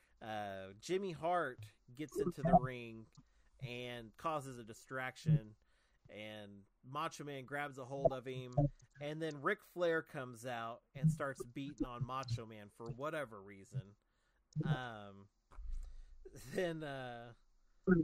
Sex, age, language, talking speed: male, 30-49, English, 120 wpm